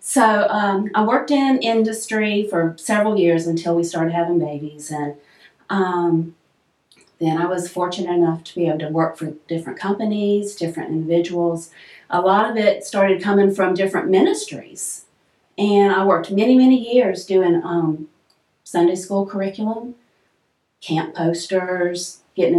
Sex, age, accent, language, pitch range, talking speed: female, 40-59, American, English, 170-210 Hz, 145 wpm